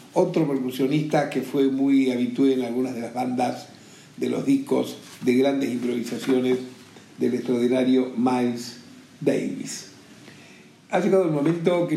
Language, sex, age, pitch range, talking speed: Spanish, male, 50-69, 130-170 Hz, 130 wpm